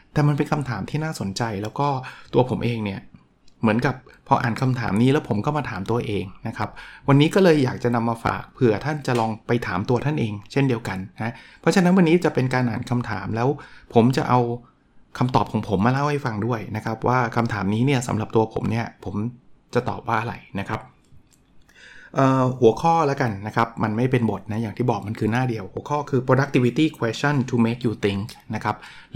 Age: 20-39